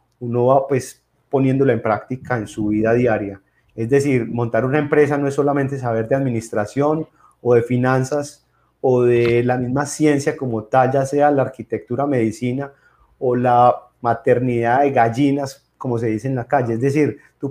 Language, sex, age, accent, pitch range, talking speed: Spanish, male, 30-49, Colombian, 120-145 Hz, 170 wpm